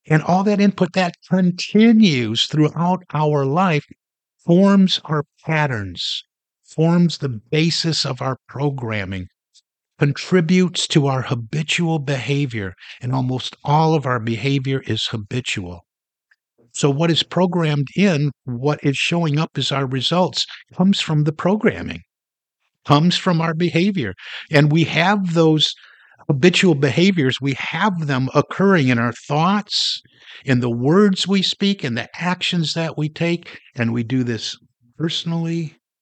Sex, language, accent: male, English, American